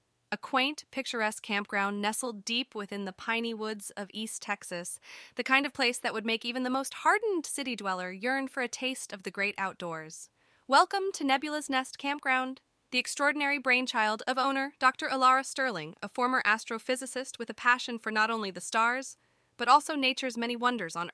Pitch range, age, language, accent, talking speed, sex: 200-260 Hz, 20-39, English, American, 180 wpm, female